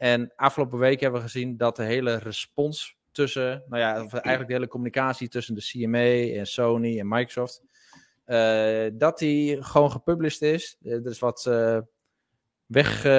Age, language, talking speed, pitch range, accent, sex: 20-39, Dutch, 165 wpm, 110-135 Hz, Dutch, male